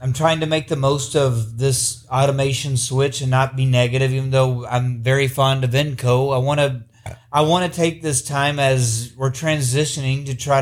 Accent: American